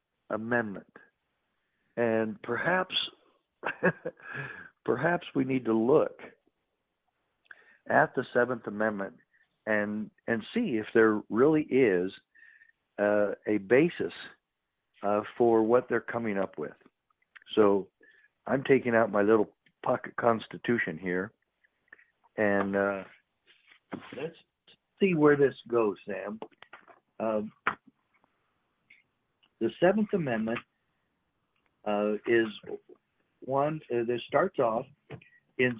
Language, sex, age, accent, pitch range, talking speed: English, male, 60-79, American, 110-170 Hz, 95 wpm